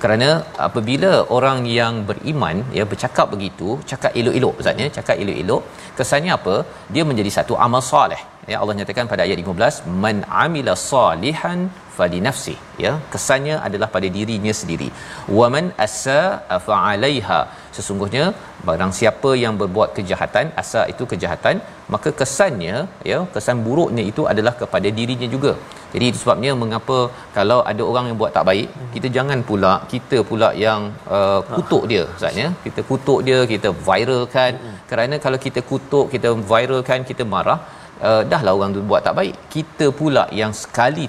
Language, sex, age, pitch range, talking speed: Malayalam, male, 40-59, 100-125 Hz, 160 wpm